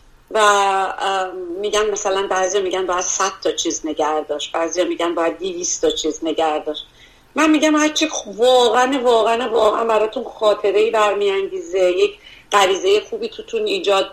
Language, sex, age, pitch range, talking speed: Persian, female, 40-59, 200-270 Hz, 130 wpm